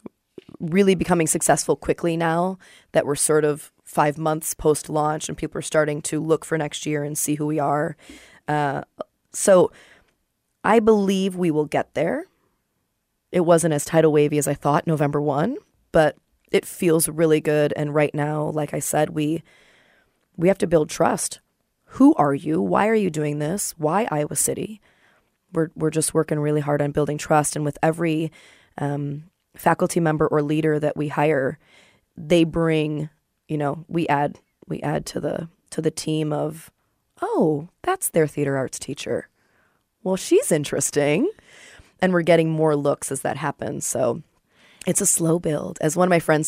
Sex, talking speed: female, 175 wpm